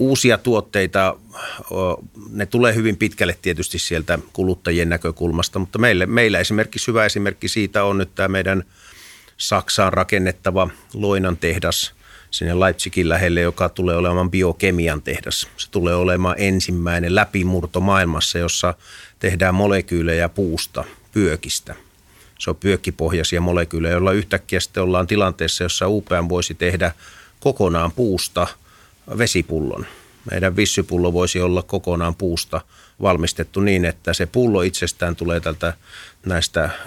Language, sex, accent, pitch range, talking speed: Finnish, male, native, 85-100 Hz, 120 wpm